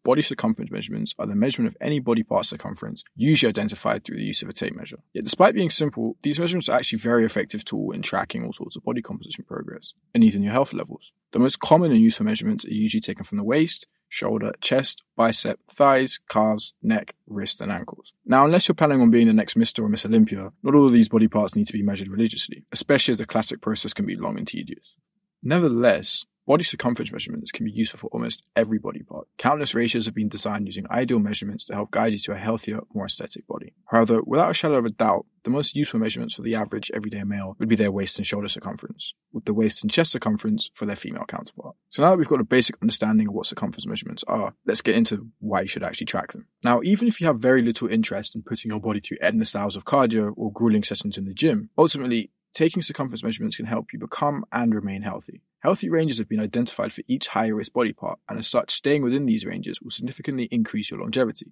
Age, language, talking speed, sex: 20-39, English, 235 wpm, male